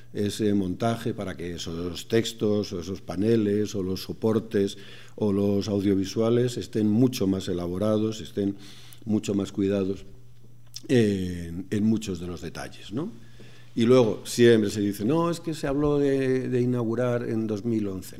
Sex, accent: male, Spanish